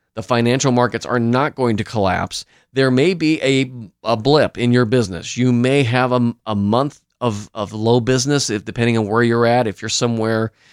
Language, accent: English, American